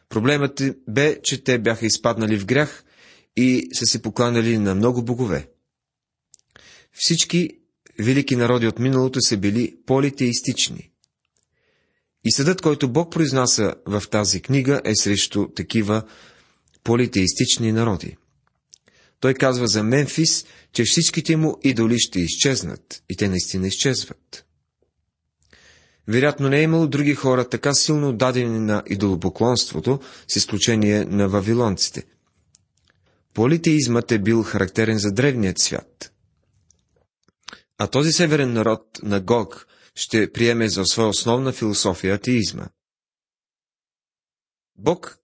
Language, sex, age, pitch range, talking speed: Bulgarian, male, 30-49, 105-135 Hz, 115 wpm